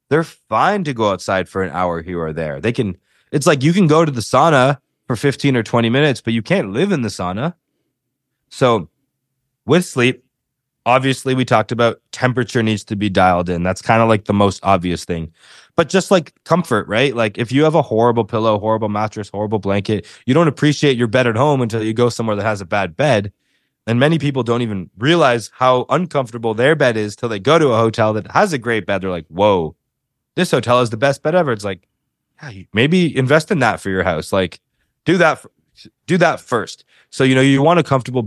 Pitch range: 105-140 Hz